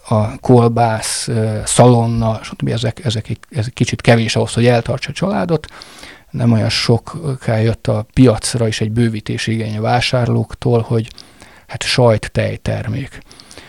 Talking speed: 120 wpm